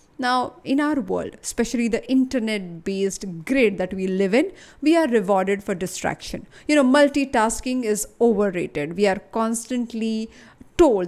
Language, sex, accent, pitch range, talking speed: English, female, Indian, 200-270 Hz, 140 wpm